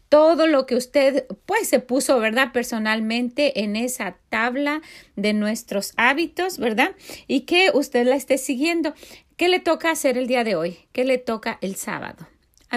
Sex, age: female, 40-59